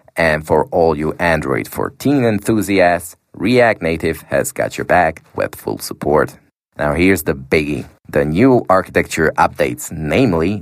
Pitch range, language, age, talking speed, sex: 80-105 Hz, English, 30-49, 140 wpm, male